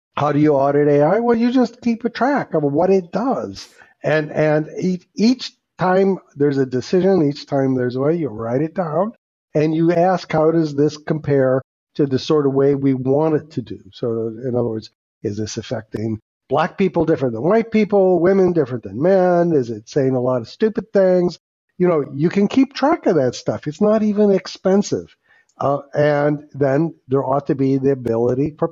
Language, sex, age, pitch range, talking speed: English, male, 50-69, 135-185 Hz, 200 wpm